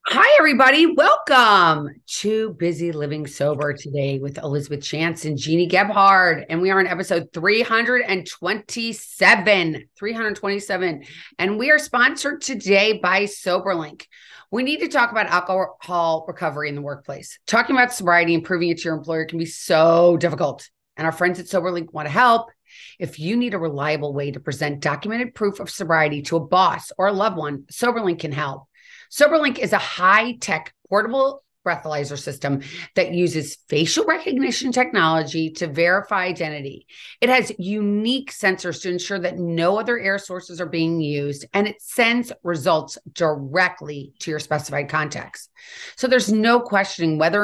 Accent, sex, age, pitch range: American, female, 30-49, 155-215 Hz